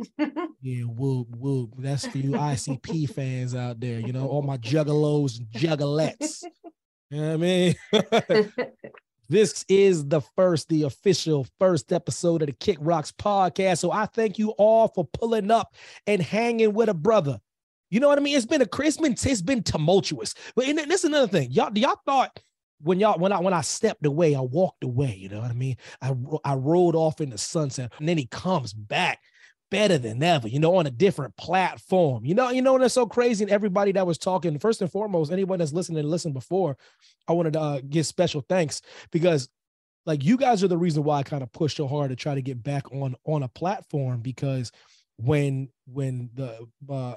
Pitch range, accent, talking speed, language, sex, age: 135-195 Hz, American, 205 wpm, English, male, 30-49